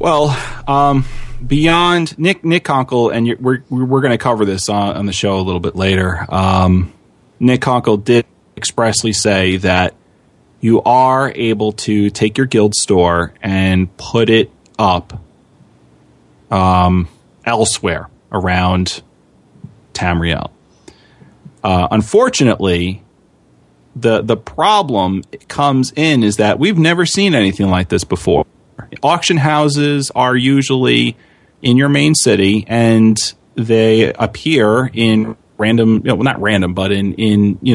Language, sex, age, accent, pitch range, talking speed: English, male, 30-49, American, 100-130 Hz, 125 wpm